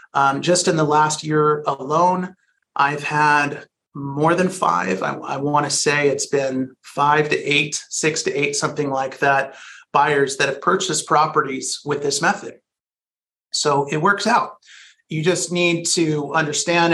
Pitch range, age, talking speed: 135-170 Hz, 30-49, 155 wpm